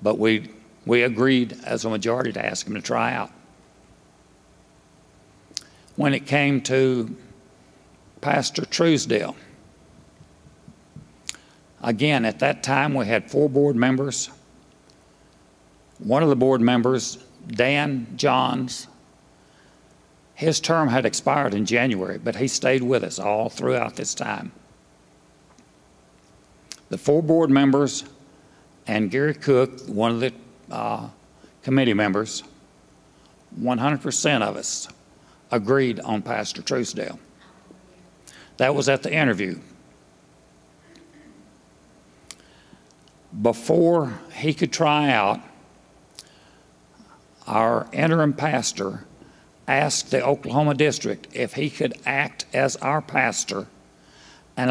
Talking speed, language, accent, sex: 105 wpm, English, American, male